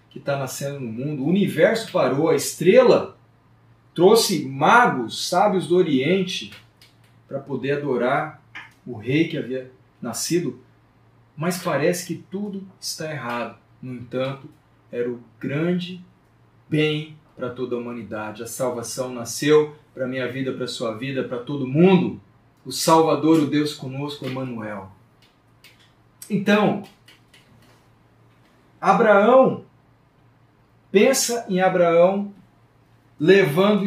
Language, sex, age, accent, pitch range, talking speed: Portuguese, male, 40-59, Brazilian, 125-180 Hz, 110 wpm